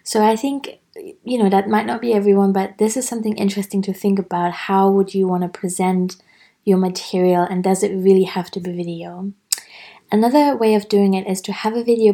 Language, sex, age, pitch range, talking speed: English, female, 20-39, 185-205 Hz, 215 wpm